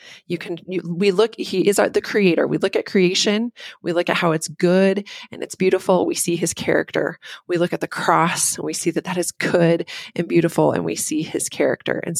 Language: English